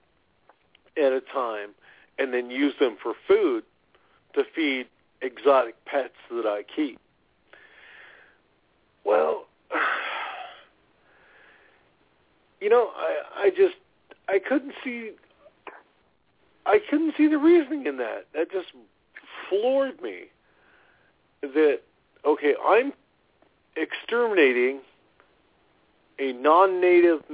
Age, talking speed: 50-69, 90 wpm